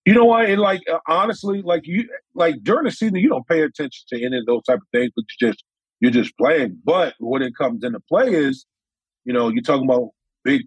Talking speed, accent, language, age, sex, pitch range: 235 wpm, American, English, 40-59, male, 130-170 Hz